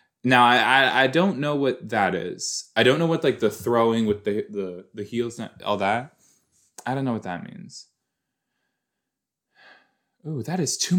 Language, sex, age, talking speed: English, male, 20-39, 185 wpm